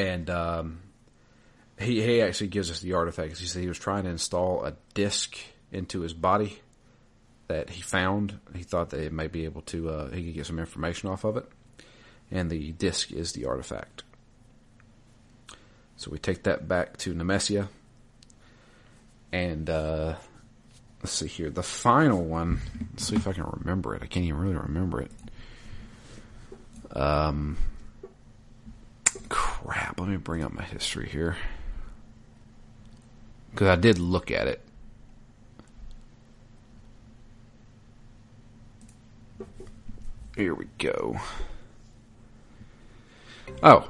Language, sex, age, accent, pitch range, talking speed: English, male, 40-59, American, 85-115 Hz, 125 wpm